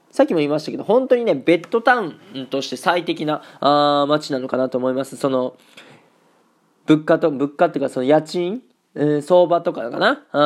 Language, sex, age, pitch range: Japanese, male, 20-39, 140-195 Hz